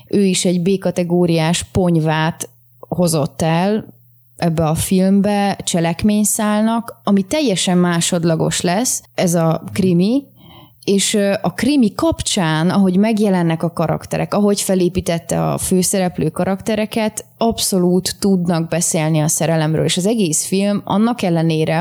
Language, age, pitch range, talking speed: Hungarian, 20-39, 165-200 Hz, 115 wpm